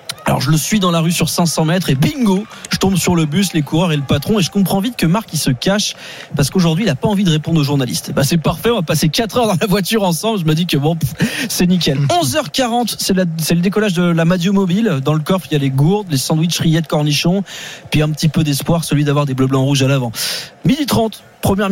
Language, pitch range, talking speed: French, 145-195 Hz, 270 wpm